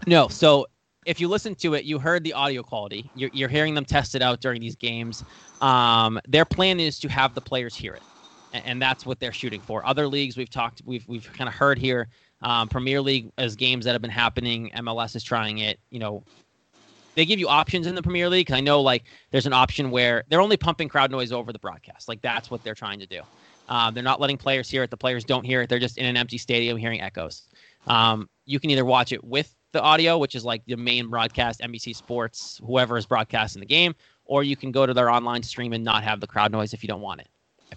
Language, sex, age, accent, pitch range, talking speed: English, male, 20-39, American, 115-140 Hz, 250 wpm